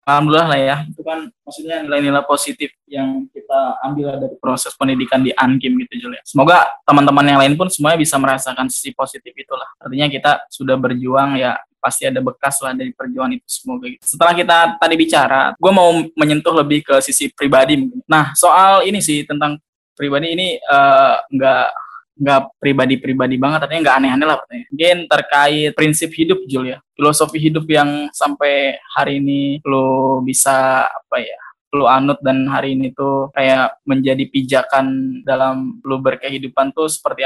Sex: male